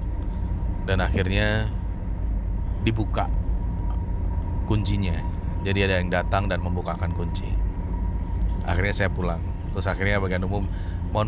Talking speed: 100 wpm